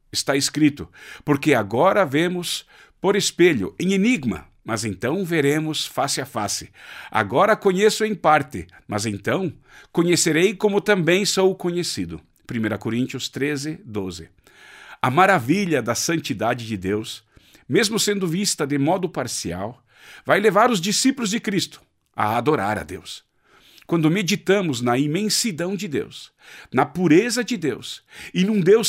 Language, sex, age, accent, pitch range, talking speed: Portuguese, male, 50-69, Brazilian, 130-195 Hz, 135 wpm